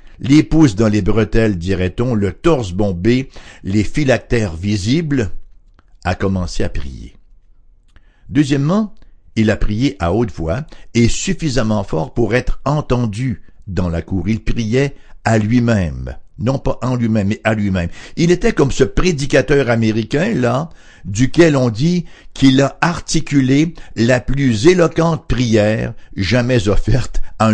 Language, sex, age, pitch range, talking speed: English, male, 60-79, 95-135 Hz, 135 wpm